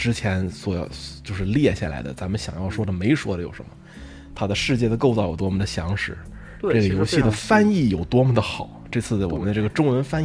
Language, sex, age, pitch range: Chinese, male, 20-39, 95-115 Hz